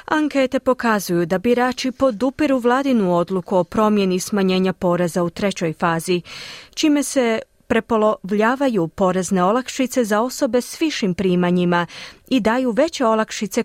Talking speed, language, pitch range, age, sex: 125 wpm, Croatian, 185-255 Hz, 30-49, female